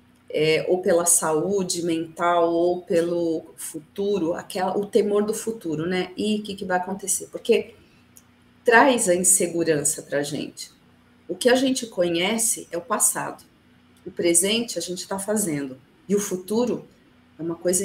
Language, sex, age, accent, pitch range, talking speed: Portuguese, female, 40-59, Brazilian, 175-225 Hz, 150 wpm